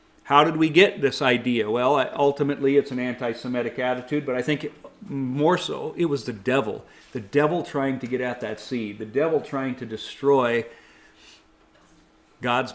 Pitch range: 125-155 Hz